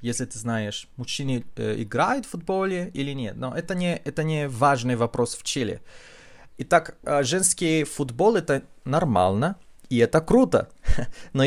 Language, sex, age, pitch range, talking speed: Russian, male, 30-49, 115-145 Hz, 145 wpm